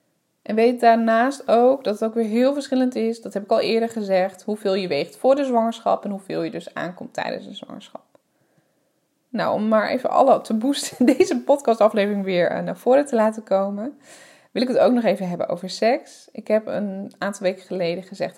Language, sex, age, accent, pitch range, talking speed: English, female, 20-39, Dutch, 185-235 Hz, 200 wpm